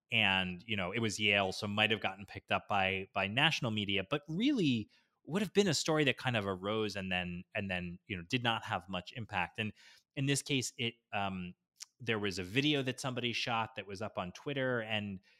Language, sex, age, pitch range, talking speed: English, male, 20-39, 105-135 Hz, 220 wpm